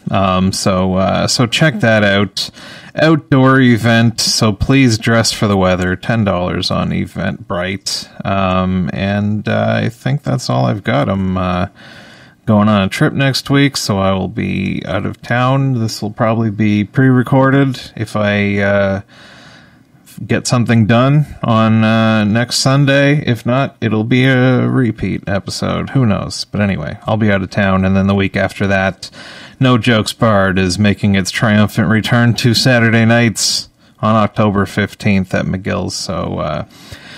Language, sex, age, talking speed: English, male, 30-49, 155 wpm